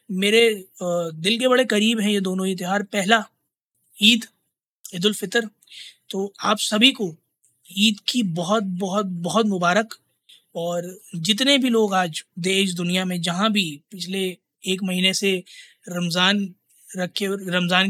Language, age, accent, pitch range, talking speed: Hindi, 20-39, native, 185-220 Hz, 135 wpm